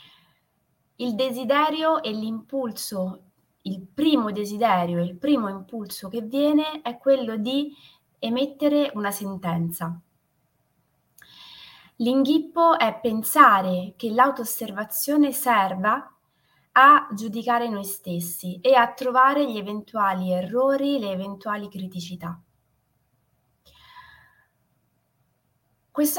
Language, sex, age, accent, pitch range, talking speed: Italian, female, 20-39, native, 185-255 Hz, 90 wpm